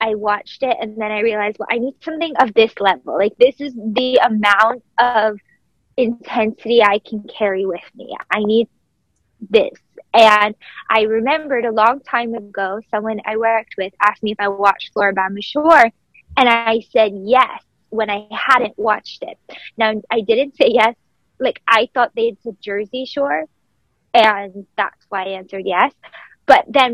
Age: 20-39